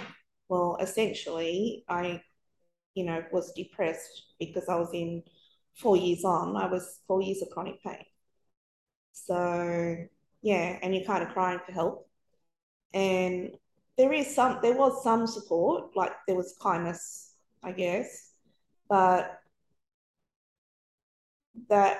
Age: 20-39